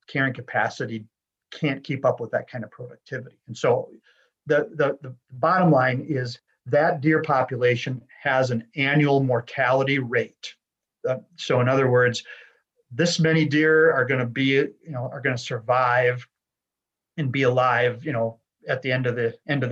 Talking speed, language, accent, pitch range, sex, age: 170 wpm, English, American, 120-150 Hz, male, 40-59